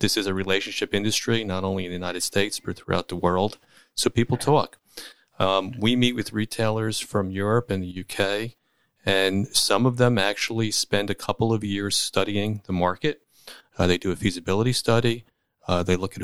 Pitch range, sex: 95-110 Hz, male